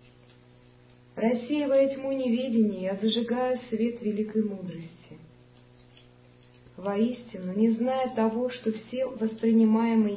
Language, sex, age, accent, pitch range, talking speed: Russian, female, 50-69, native, 165-235 Hz, 90 wpm